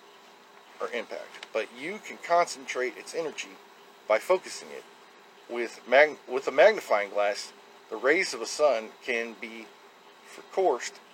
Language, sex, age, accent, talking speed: English, male, 40-59, American, 135 wpm